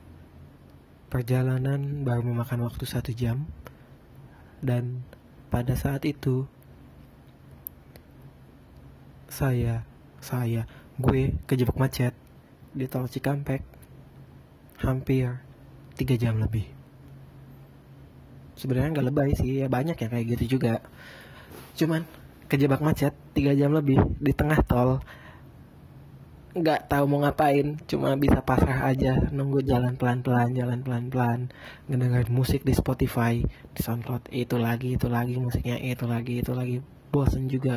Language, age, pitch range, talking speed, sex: Indonesian, 20-39, 120-140 Hz, 115 wpm, male